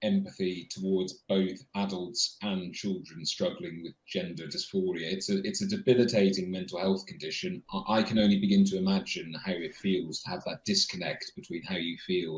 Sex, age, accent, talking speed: male, 30-49, British, 170 wpm